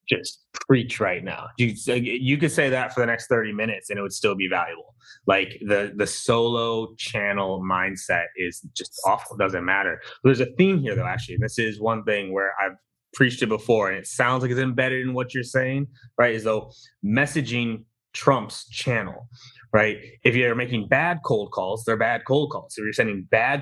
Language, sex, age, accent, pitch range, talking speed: English, male, 20-39, American, 110-130 Hz, 205 wpm